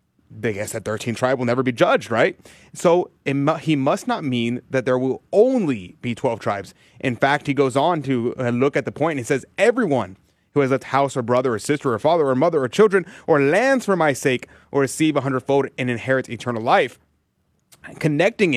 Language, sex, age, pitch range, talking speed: English, male, 30-49, 120-150 Hz, 215 wpm